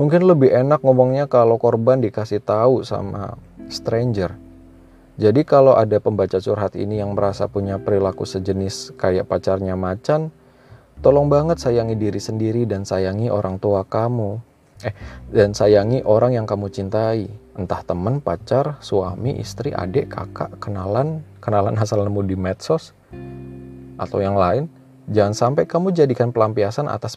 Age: 20-39